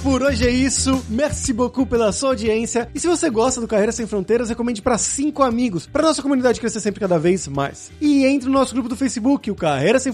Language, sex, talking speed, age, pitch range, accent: Portuguese, male, 230 wpm, 20-39, 195-260 Hz, Brazilian